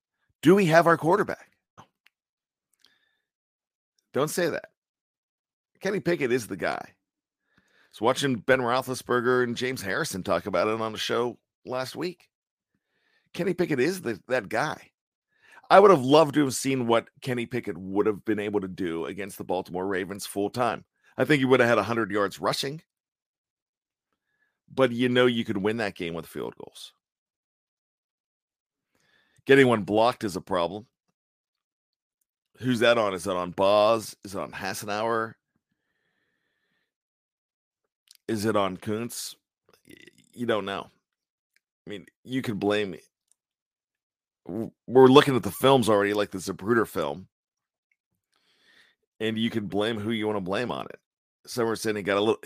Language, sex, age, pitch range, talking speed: English, male, 40-59, 105-130 Hz, 155 wpm